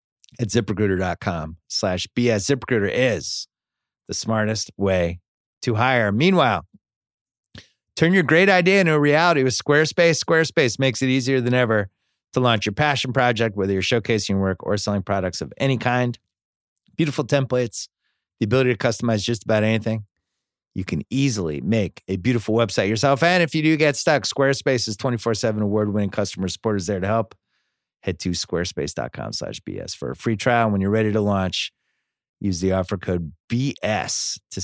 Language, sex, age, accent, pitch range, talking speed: English, male, 30-49, American, 95-130 Hz, 165 wpm